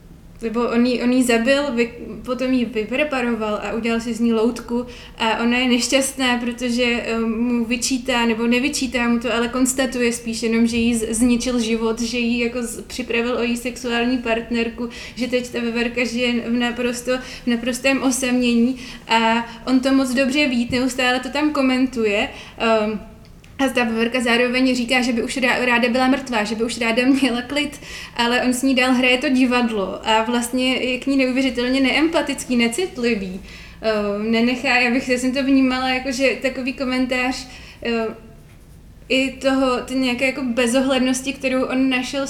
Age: 20-39